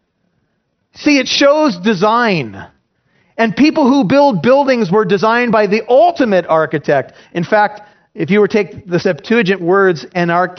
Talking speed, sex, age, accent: 145 wpm, male, 40-59, American